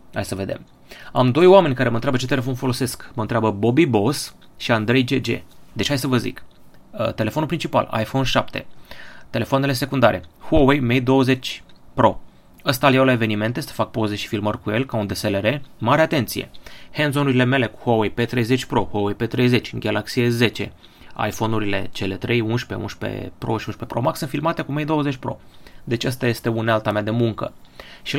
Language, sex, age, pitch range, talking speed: Romanian, male, 30-49, 110-140 Hz, 185 wpm